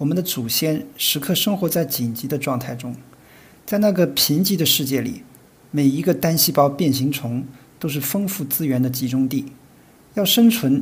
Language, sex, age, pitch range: Chinese, male, 50-69, 135-185 Hz